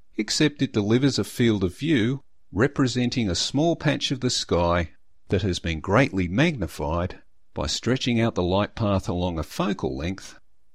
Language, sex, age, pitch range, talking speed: English, male, 50-69, 90-125 Hz, 160 wpm